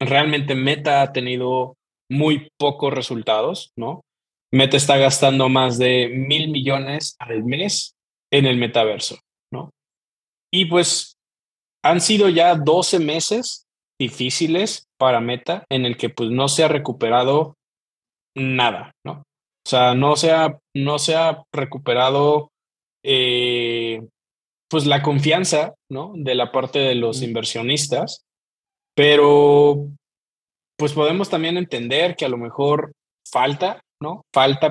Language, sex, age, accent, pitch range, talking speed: Spanish, male, 20-39, Mexican, 125-150 Hz, 125 wpm